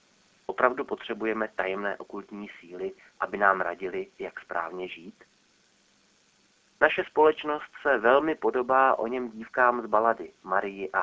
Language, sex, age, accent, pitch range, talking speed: Czech, male, 30-49, native, 95-130 Hz, 125 wpm